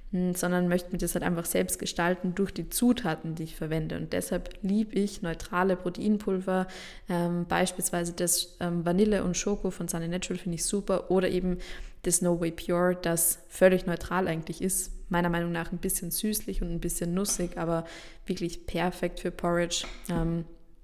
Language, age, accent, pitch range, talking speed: German, 20-39, German, 175-195 Hz, 175 wpm